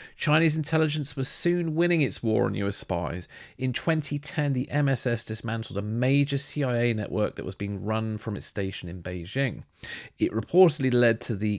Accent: British